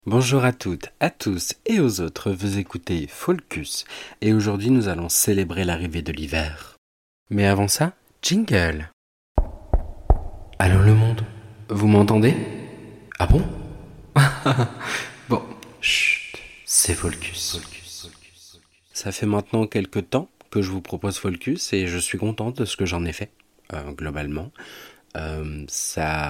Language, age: French, 40-59